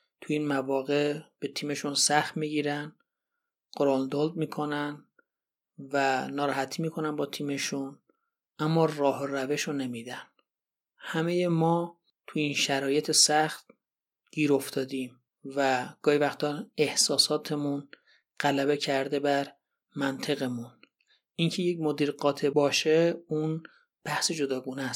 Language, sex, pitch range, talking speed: Persian, male, 135-155 Hz, 105 wpm